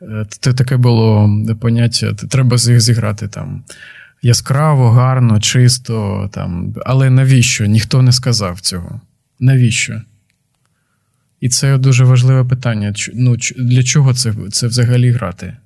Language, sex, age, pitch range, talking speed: Ukrainian, male, 20-39, 110-125 Hz, 120 wpm